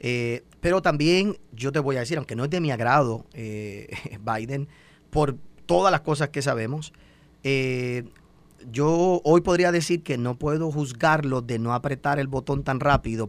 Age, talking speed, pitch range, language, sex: 30-49, 170 wpm, 120-160 Hz, Spanish, male